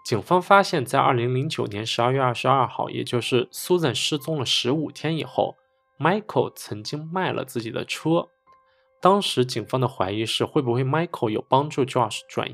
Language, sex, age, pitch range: Chinese, male, 20-39, 120-160 Hz